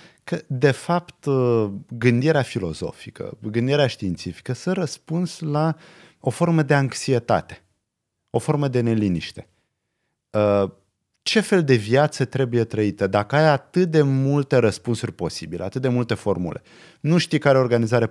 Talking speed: 130 wpm